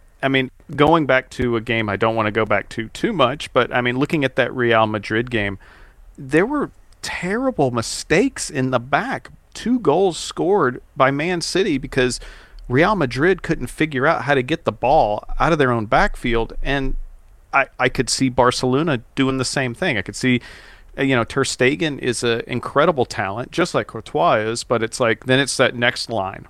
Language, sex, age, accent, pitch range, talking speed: English, male, 40-59, American, 115-135 Hz, 195 wpm